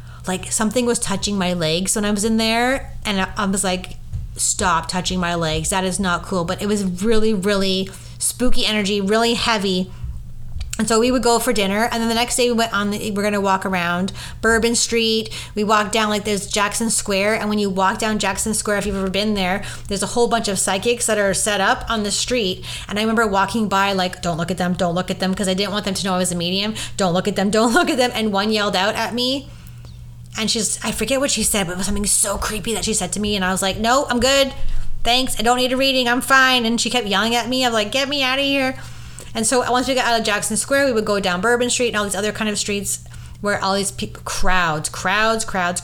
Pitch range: 185-230 Hz